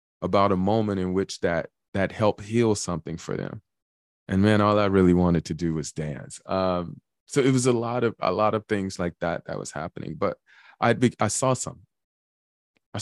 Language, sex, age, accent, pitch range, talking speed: English, male, 20-39, American, 85-105 Hz, 205 wpm